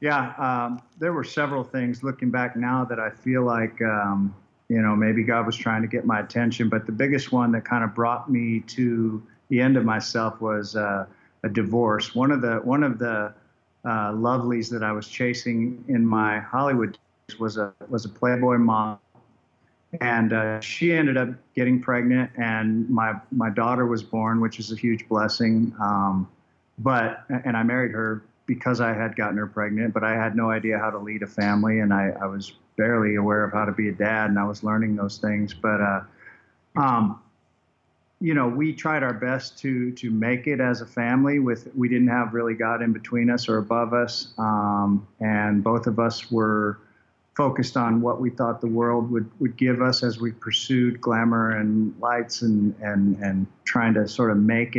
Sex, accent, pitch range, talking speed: male, American, 110-125 Hz, 200 wpm